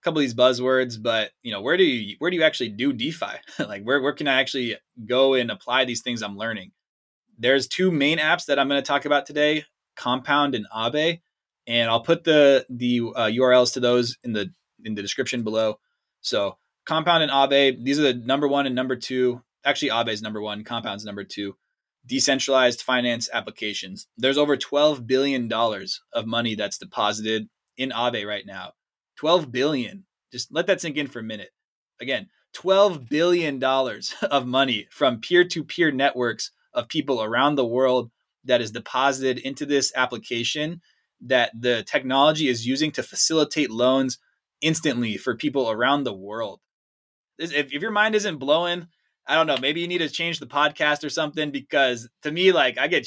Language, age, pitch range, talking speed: English, 20-39, 120-150 Hz, 180 wpm